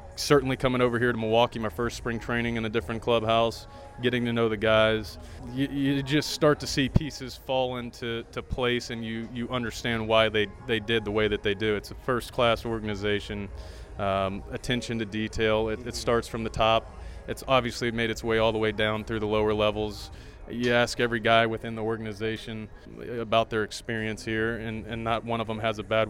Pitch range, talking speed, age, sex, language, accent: 110-120 Hz, 205 wpm, 30-49, male, English, American